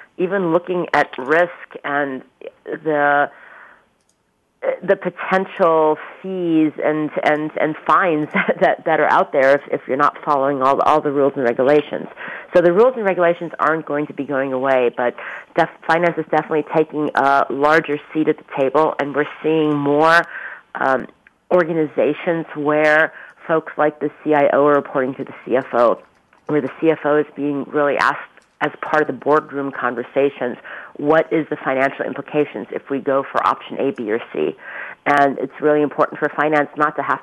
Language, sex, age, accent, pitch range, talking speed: English, female, 40-59, American, 135-155 Hz, 170 wpm